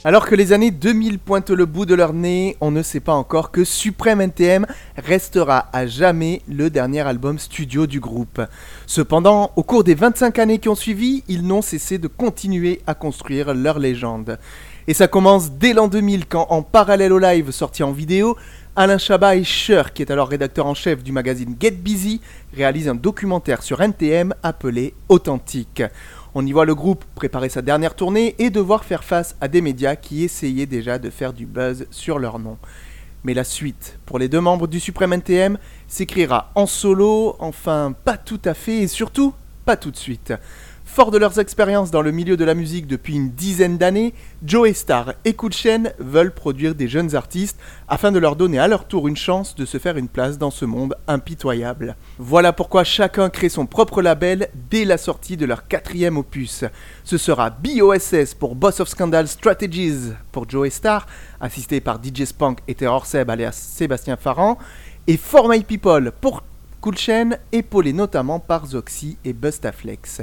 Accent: French